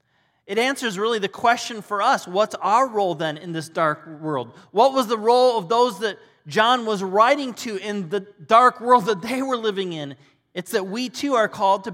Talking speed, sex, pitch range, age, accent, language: 210 wpm, male, 180-240 Hz, 30-49, American, English